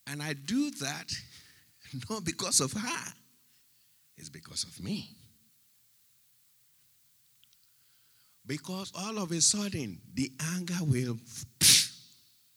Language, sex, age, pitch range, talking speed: English, male, 50-69, 105-140 Hz, 95 wpm